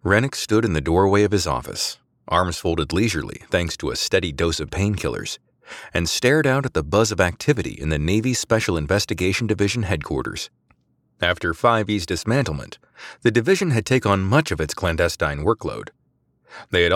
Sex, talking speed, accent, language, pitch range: male, 170 wpm, American, English, 85-115 Hz